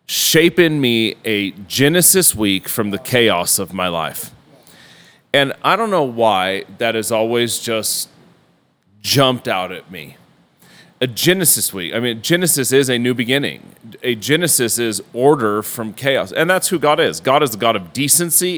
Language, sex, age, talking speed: English, male, 30-49, 170 wpm